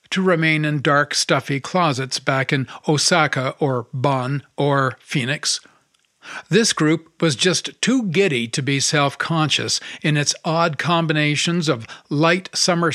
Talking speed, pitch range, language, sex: 140 wpm, 145-175 Hz, English, male